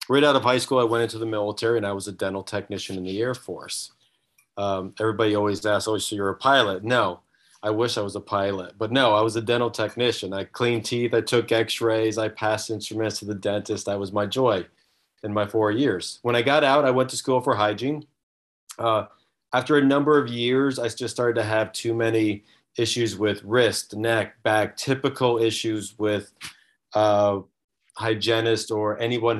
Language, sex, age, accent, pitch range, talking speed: English, male, 30-49, American, 105-125 Hz, 200 wpm